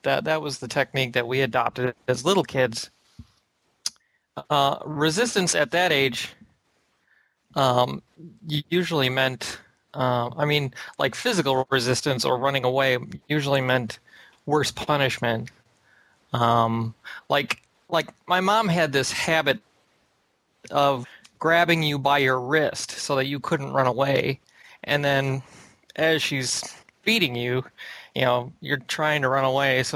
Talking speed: 130 wpm